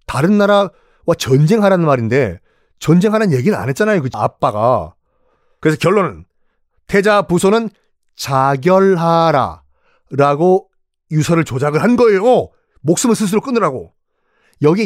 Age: 40-59